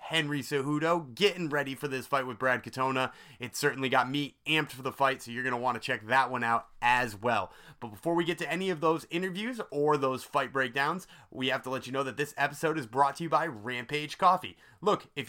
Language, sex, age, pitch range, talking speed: English, male, 30-49, 130-165 Hz, 240 wpm